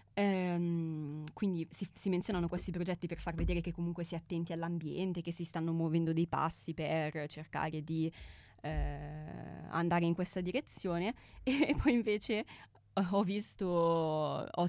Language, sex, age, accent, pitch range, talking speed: Italian, female, 20-39, native, 160-185 Hz, 145 wpm